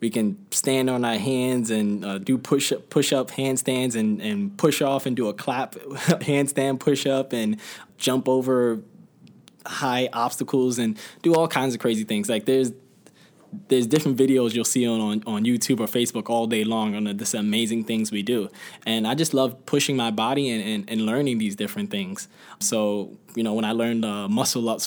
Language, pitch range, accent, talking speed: English, 110-140 Hz, American, 200 wpm